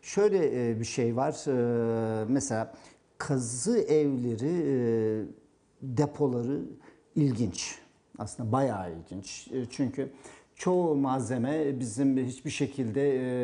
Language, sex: Turkish, male